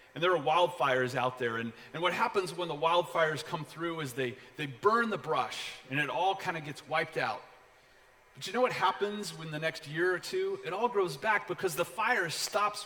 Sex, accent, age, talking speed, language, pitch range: male, American, 30-49, 225 wpm, English, 125-175 Hz